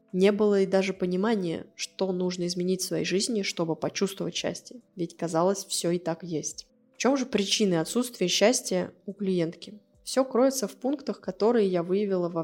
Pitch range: 175-205 Hz